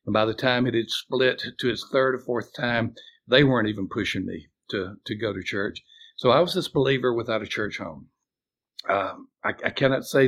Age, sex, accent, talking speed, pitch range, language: 60-79, male, American, 215 wpm, 110-135 Hz, English